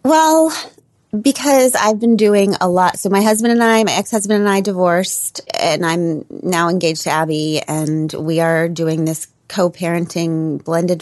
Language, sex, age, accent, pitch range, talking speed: English, female, 30-49, American, 155-205 Hz, 165 wpm